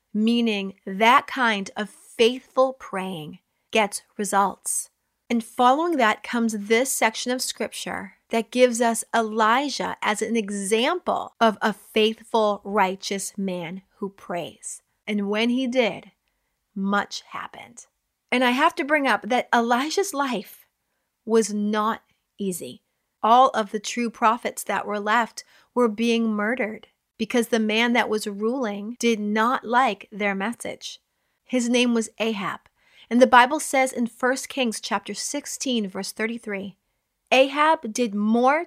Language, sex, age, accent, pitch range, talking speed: English, female, 30-49, American, 205-240 Hz, 135 wpm